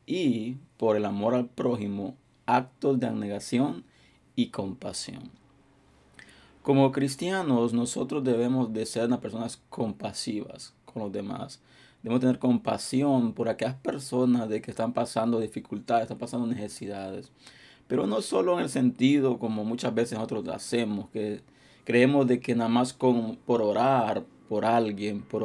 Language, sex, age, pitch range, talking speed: Spanish, male, 30-49, 110-130 Hz, 140 wpm